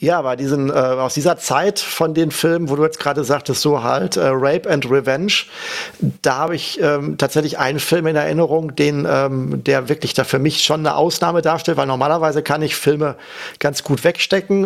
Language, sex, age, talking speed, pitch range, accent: German, male, 40-59, 200 wpm, 140-160 Hz, German